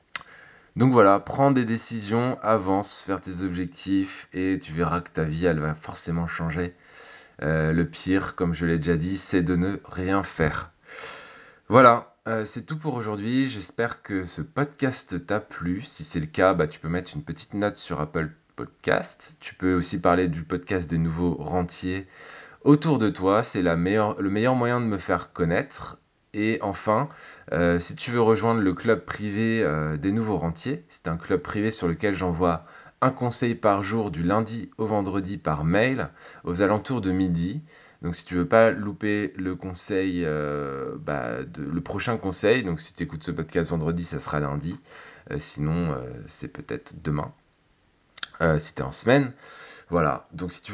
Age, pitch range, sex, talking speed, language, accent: 20-39, 85-115 Hz, male, 185 wpm, French, French